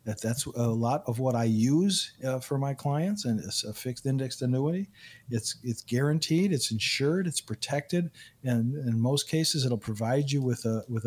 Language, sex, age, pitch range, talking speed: English, male, 50-69, 120-145 Hz, 190 wpm